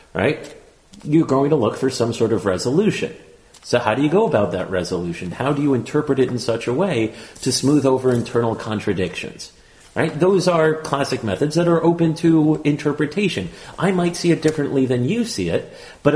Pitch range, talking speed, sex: 115-150 Hz, 195 wpm, male